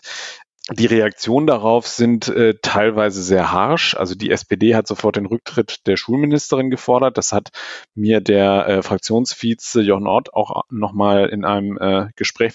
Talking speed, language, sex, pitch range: 155 wpm, German, male, 100-115 Hz